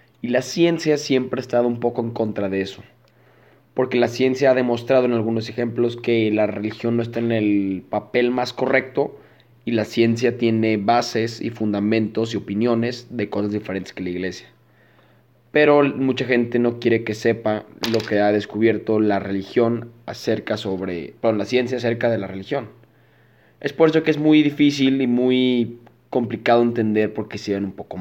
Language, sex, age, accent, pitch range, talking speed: Spanish, male, 20-39, Mexican, 110-130 Hz, 180 wpm